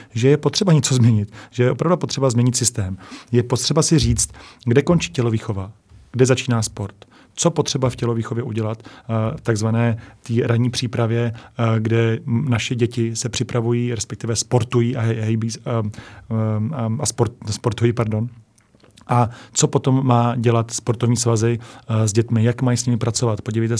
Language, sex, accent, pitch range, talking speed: Czech, male, native, 115-125 Hz, 155 wpm